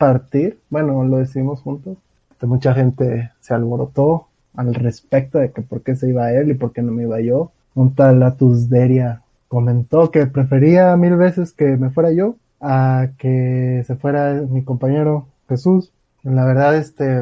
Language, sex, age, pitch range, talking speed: Spanish, male, 20-39, 125-155 Hz, 170 wpm